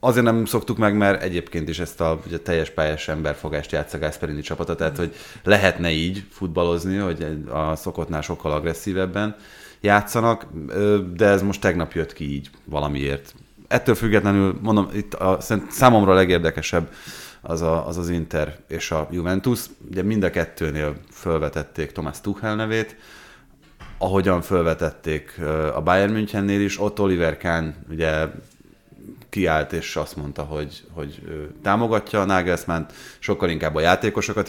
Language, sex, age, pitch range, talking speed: Hungarian, male, 30-49, 80-100 Hz, 140 wpm